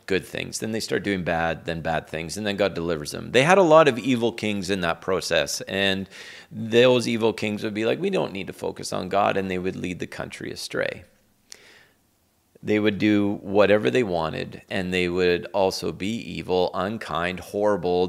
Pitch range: 90-110 Hz